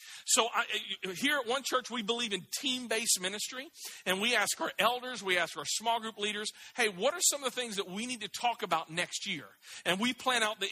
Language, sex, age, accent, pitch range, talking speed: English, male, 40-59, American, 195-270 Hz, 230 wpm